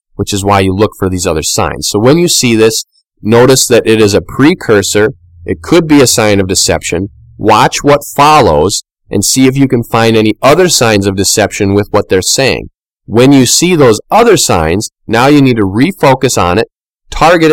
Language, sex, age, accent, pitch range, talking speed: English, male, 30-49, American, 105-125 Hz, 200 wpm